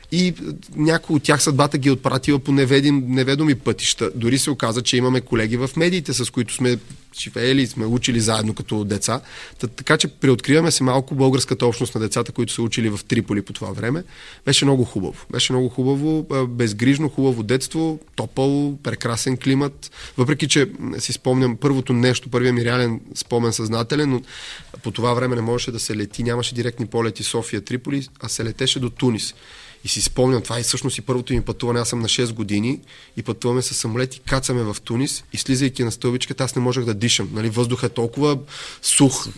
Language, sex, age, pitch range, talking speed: Bulgarian, male, 30-49, 120-135 Hz, 185 wpm